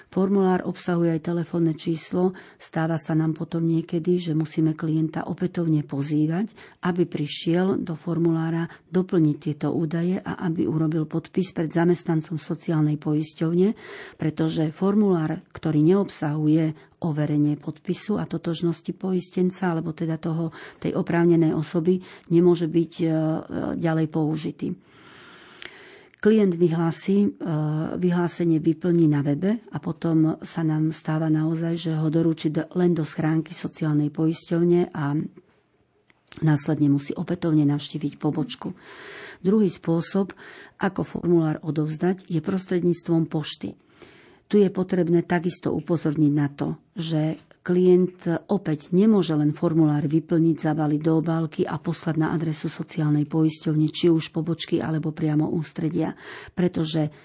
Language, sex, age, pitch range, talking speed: Slovak, female, 40-59, 155-180 Hz, 120 wpm